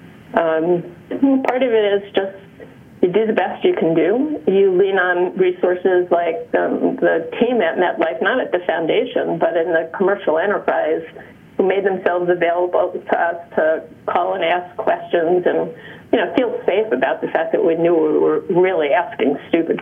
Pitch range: 180-245 Hz